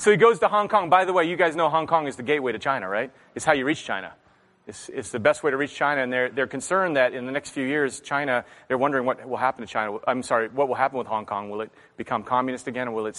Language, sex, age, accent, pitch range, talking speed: English, male, 30-49, American, 130-195 Hz, 305 wpm